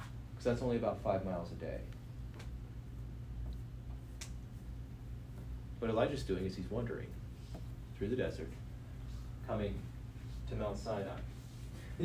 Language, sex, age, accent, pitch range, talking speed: English, male, 30-49, American, 105-125 Hz, 115 wpm